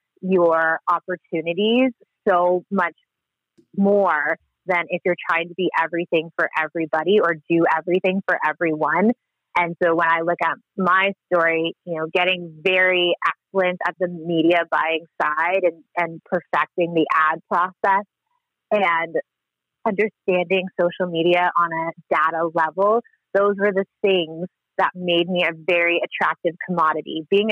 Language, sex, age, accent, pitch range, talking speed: English, female, 20-39, American, 165-190 Hz, 135 wpm